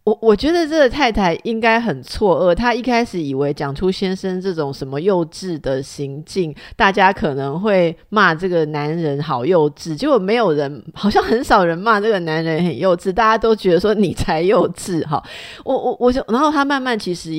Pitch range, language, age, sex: 155-220 Hz, Chinese, 30-49, female